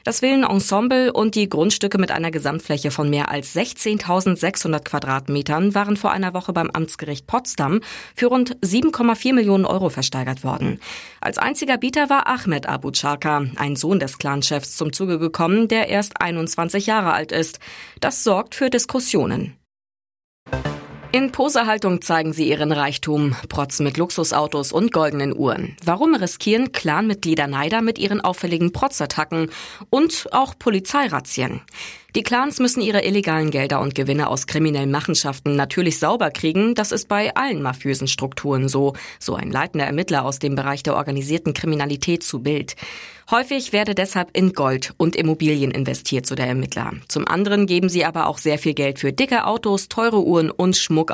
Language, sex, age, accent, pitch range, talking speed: German, female, 20-39, German, 145-210 Hz, 155 wpm